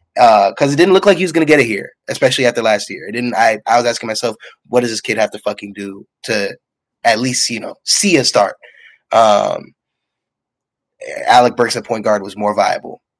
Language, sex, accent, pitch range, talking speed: English, male, American, 110-145 Hz, 220 wpm